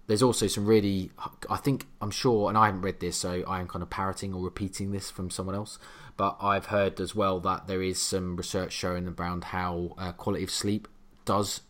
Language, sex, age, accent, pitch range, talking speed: English, male, 20-39, British, 85-100 Hz, 215 wpm